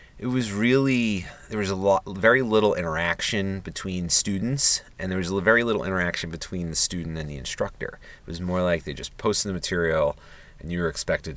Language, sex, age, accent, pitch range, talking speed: English, male, 30-49, American, 80-110 Hz, 200 wpm